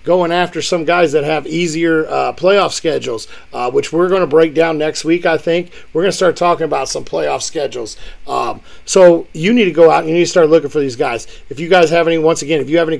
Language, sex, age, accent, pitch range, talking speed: English, male, 40-59, American, 160-185 Hz, 265 wpm